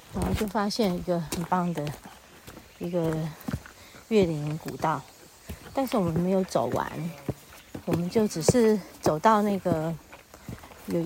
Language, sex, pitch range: Chinese, female, 175-230 Hz